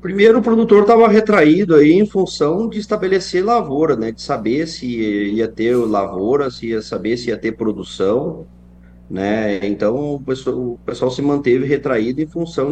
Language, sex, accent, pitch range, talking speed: Portuguese, male, Brazilian, 95-130 Hz, 170 wpm